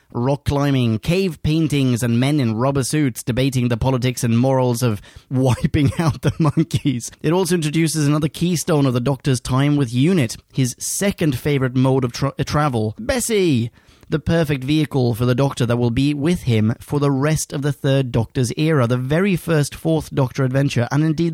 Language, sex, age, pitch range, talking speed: English, male, 30-49, 125-160 Hz, 180 wpm